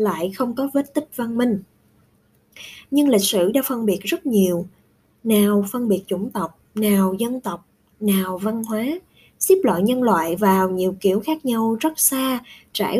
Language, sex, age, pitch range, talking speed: Vietnamese, female, 20-39, 195-260 Hz, 175 wpm